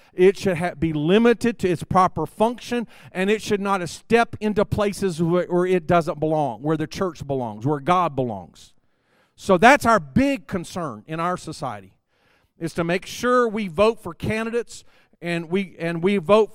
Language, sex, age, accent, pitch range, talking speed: English, male, 50-69, American, 155-200 Hz, 165 wpm